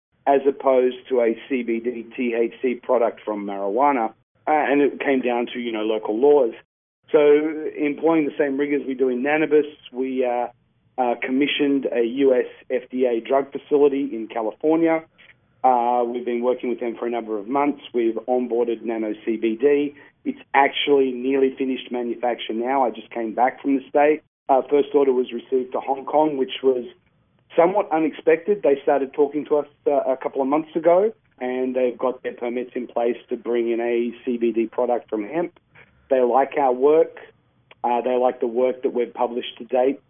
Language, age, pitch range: English, 40-59, 120-145 Hz